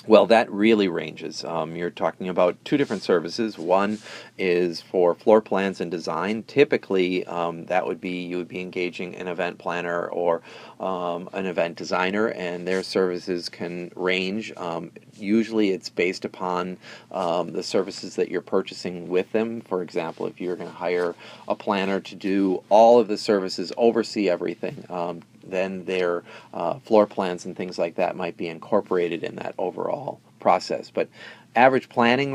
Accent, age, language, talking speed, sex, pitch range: American, 40-59, English, 165 wpm, male, 90-110 Hz